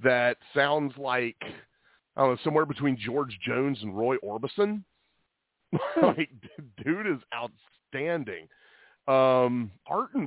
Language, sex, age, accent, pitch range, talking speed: English, male, 30-49, American, 115-150 Hz, 110 wpm